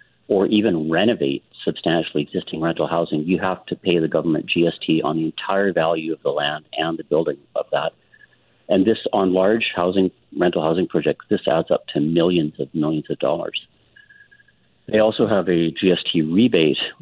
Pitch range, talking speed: 80-90 Hz, 175 wpm